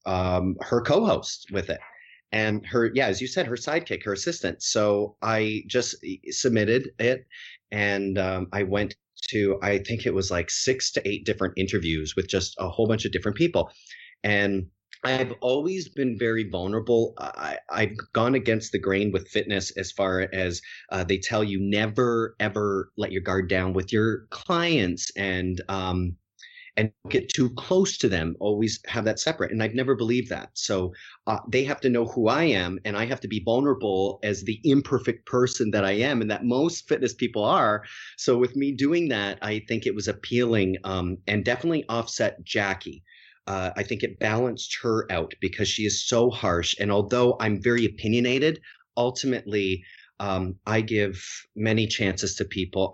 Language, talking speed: English, 180 wpm